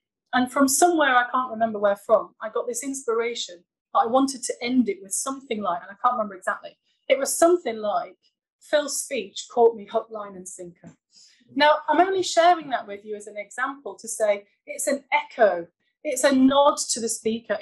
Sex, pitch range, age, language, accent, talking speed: female, 205-280 Hz, 30-49, English, British, 200 wpm